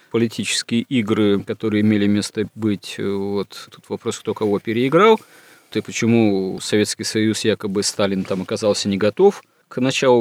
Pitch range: 100-115 Hz